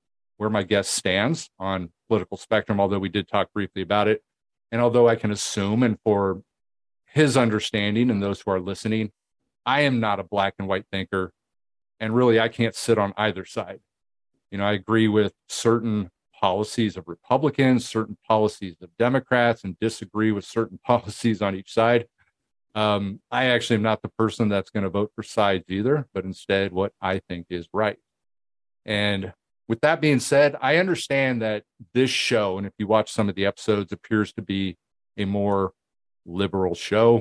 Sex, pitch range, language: male, 95-115 Hz, English